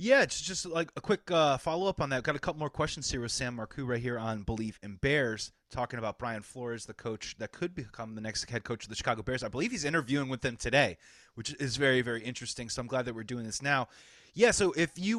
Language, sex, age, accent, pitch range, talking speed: English, male, 30-49, American, 130-160 Hz, 255 wpm